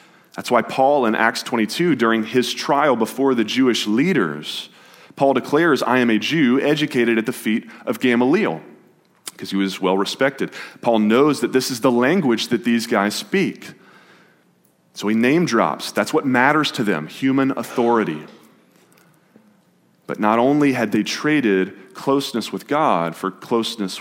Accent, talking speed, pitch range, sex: American, 155 wpm, 105-145 Hz, male